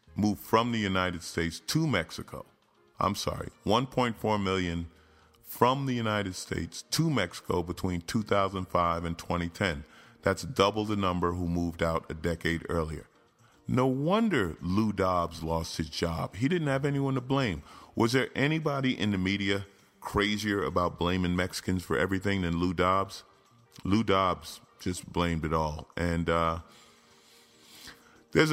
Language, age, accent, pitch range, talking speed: English, 40-59, American, 85-105 Hz, 145 wpm